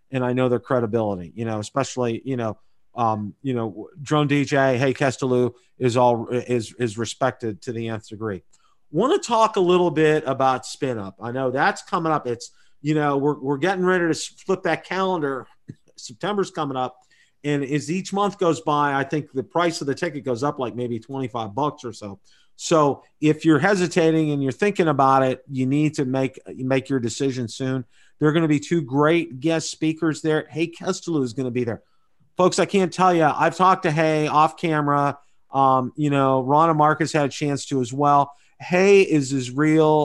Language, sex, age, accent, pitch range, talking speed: English, male, 40-59, American, 130-155 Hz, 205 wpm